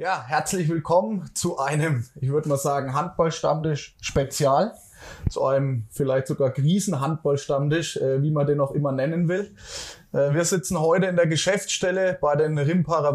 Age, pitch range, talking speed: 20-39, 140-165 Hz, 150 wpm